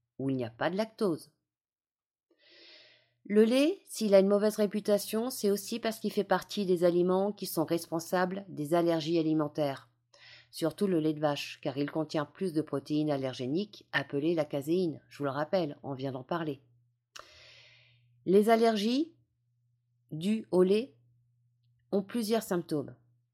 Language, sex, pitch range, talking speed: French, female, 135-205 Hz, 150 wpm